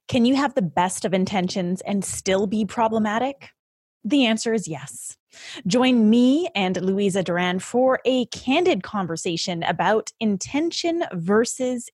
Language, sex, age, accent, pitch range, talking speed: English, female, 20-39, American, 190-255 Hz, 135 wpm